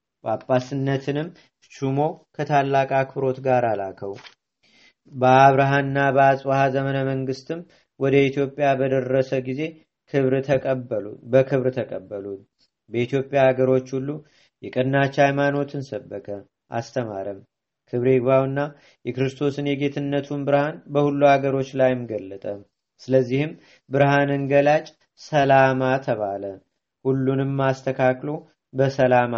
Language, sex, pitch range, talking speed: Amharic, male, 130-140 Hz, 85 wpm